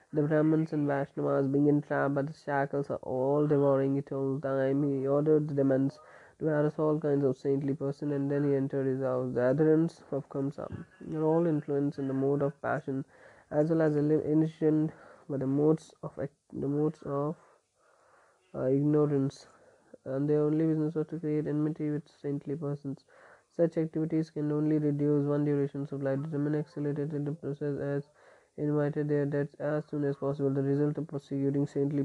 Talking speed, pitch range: 185 wpm, 140-155 Hz